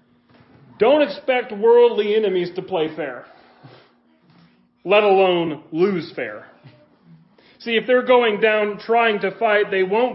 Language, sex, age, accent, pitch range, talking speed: English, male, 40-59, American, 170-225 Hz, 125 wpm